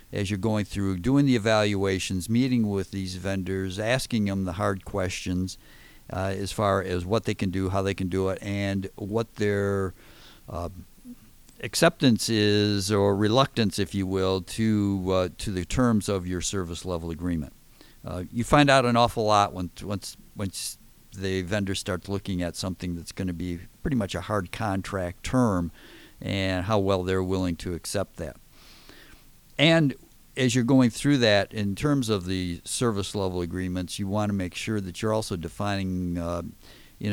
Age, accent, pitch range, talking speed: 50-69, American, 90-110 Hz, 175 wpm